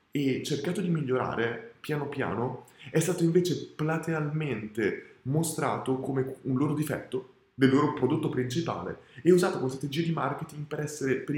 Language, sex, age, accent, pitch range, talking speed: Italian, male, 20-39, native, 125-160 Hz, 150 wpm